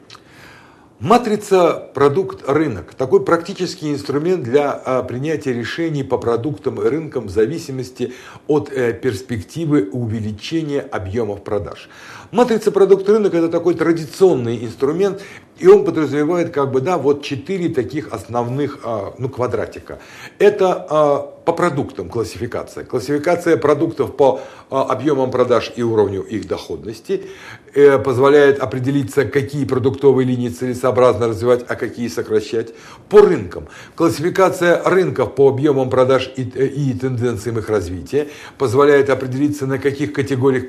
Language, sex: Russian, male